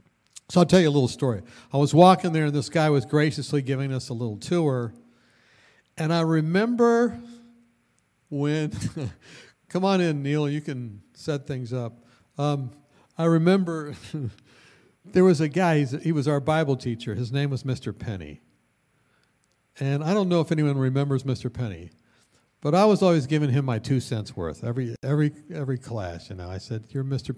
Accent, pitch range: American, 120-160 Hz